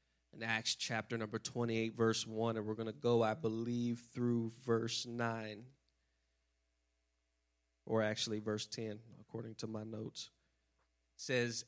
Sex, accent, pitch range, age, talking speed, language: male, American, 110-130 Hz, 30-49, 140 wpm, English